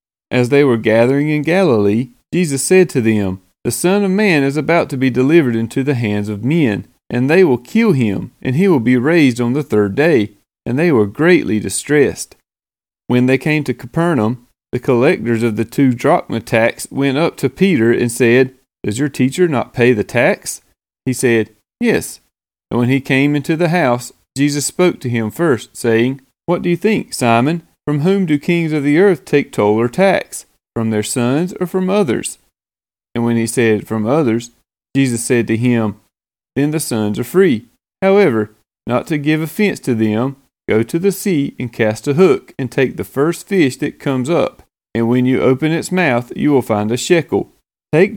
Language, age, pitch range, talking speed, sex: English, 40-59, 115-155 Hz, 195 wpm, male